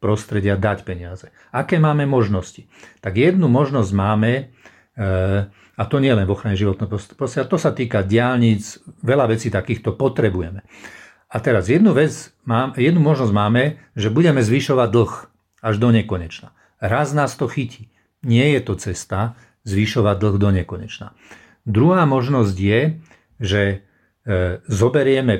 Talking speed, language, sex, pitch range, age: 135 wpm, Slovak, male, 100-125 Hz, 50-69